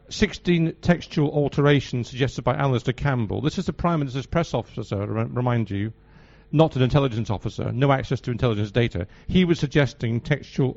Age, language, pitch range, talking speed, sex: 50-69, English, 110-140 Hz, 165 wpm, male